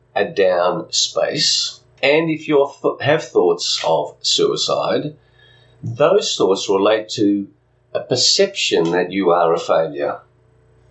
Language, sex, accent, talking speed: English, male, Australian, 120 wpm